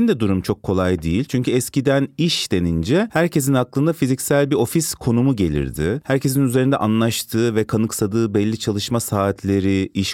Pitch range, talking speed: 100-135 Hz, 150 wpm